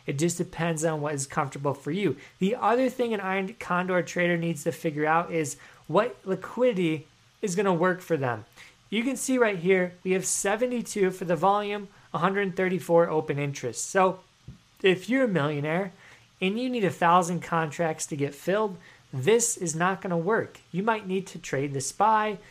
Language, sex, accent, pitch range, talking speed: English, male, American, 150-190 Hz, 185 wpm